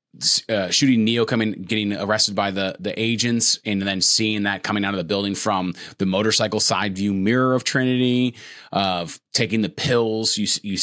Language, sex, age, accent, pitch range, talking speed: English, male, 30-49, American, 100-125 Hz, 190 wpm